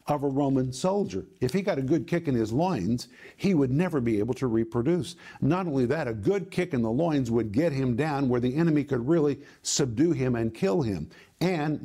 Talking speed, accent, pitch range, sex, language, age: 225 wpm, American, 130-170 Hz, male, English, 50-69